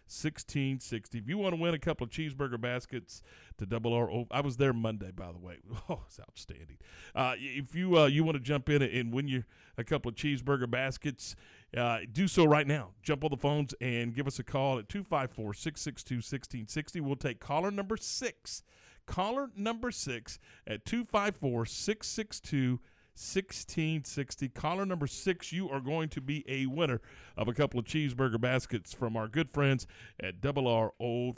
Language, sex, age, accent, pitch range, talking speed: English, male, 40-59, American, 115-160 Hz, 180 wpm